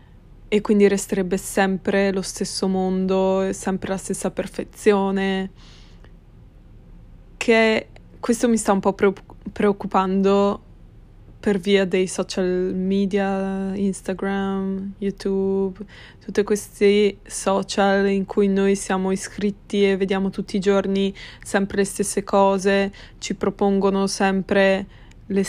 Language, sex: Italian, female